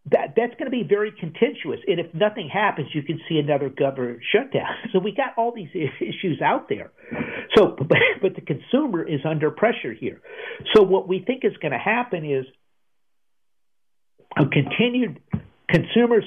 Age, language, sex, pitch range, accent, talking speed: 50-69, English, male, 150-215 Hz, American, 165 wpm